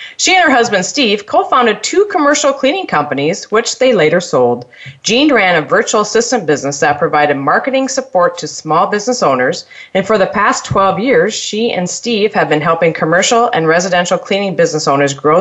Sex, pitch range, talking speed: female, 165-245 Hz, 185 wpm